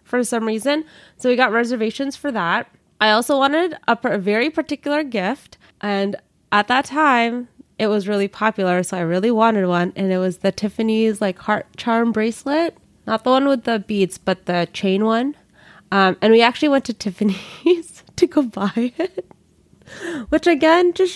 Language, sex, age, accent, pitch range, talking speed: English, female, 20-39, American, 190-250 Hz, 180 wpm